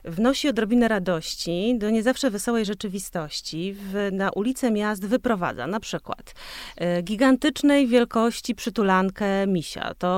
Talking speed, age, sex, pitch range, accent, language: 120 wpm, 30-49, female, 175-230 Hz, native, Polish